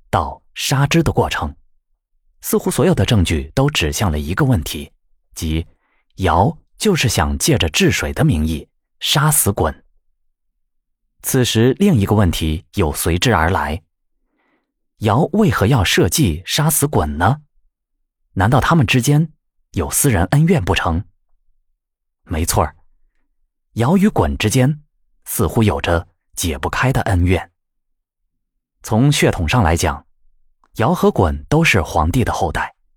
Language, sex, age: Chinese, male, 20-39